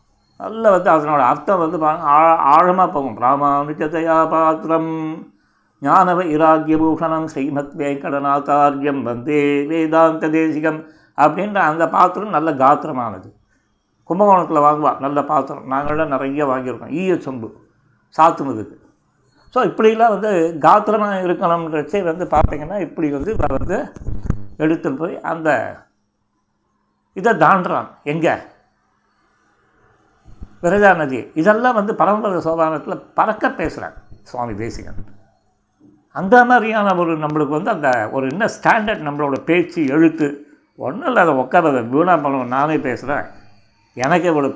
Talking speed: 115 wpm